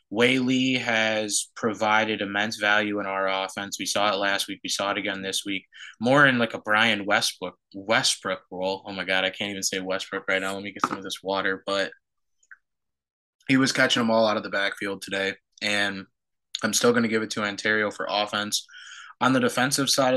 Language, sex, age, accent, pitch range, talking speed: English, male, 20-39, American, 95-110 Hz, 210 wpm